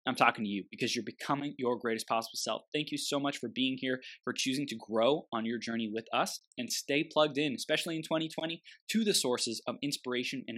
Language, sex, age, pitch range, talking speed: English, male, 20-39, 120-160 Hz, 225 wpm